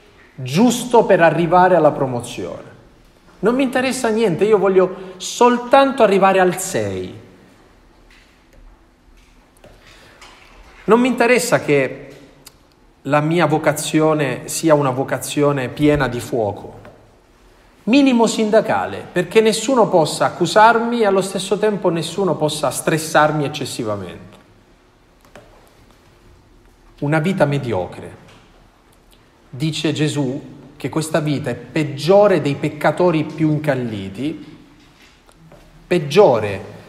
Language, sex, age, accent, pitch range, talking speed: Italian, male, 40-59, native, 130-195 Hz, 95 wpm